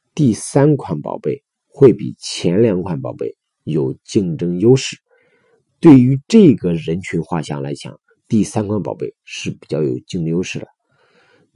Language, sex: Chinese, male